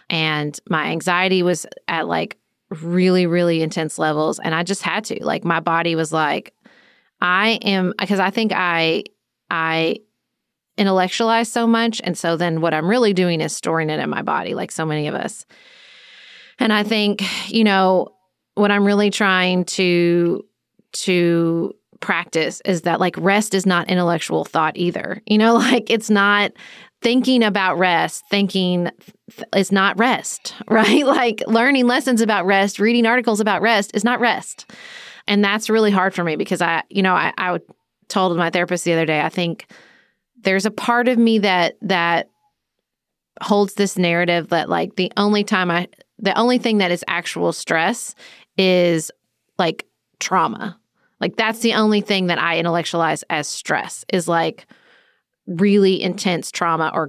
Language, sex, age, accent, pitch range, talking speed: English, female, 30-49, American, 170-220 Hz, 165 wpm